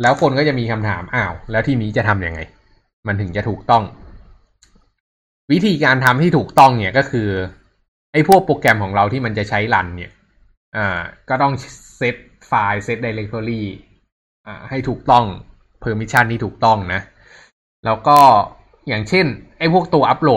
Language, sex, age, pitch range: Thai, male, 20-39, 100-130 Hz